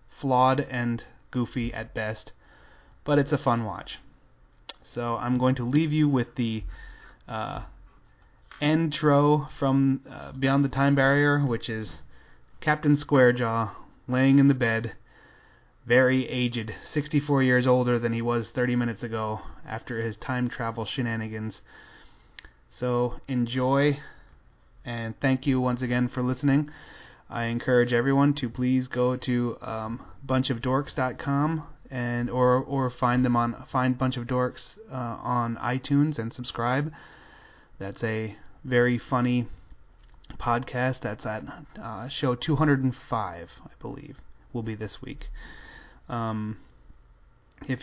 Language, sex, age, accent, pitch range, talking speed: English, male, 30-49, American, 115-135 Hz, 125 wpm